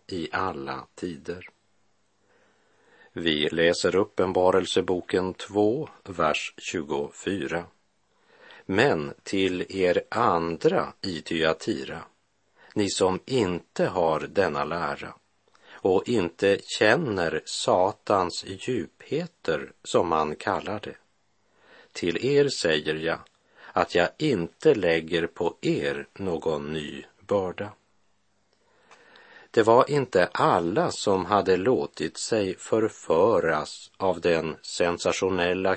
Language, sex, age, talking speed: Swedish, male, 50-69, 90 wpm